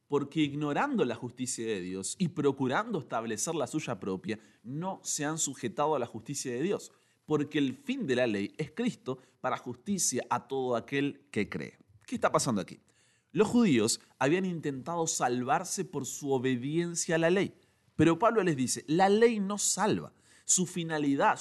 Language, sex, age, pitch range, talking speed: Spanish, male, 30-49, 115-170 Hz, 170 wpm